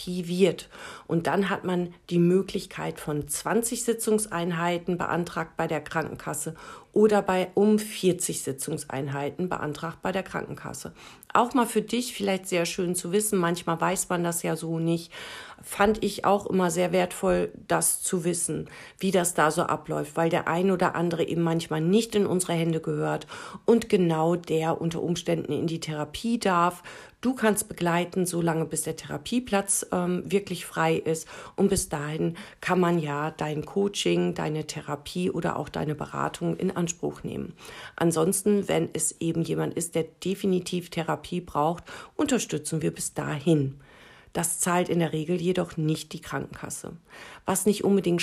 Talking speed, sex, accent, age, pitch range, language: 160 wpm, female, German, 50-69, 160-195 Hz, German